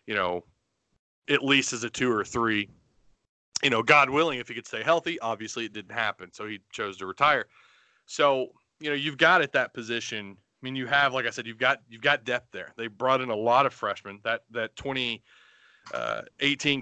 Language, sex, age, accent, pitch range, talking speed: English, male, 30-49, American, 105-125 Hz, 205 wpm